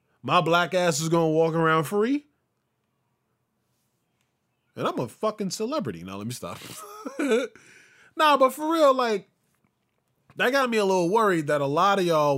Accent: American